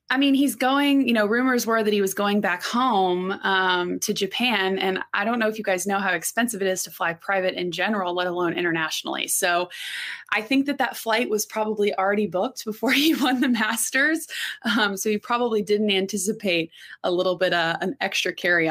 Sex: female